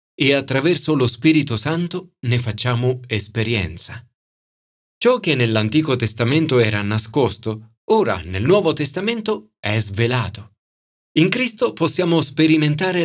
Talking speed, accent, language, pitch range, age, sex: 110 wpm, native, Italian, 110-170 Hz, 40-59, male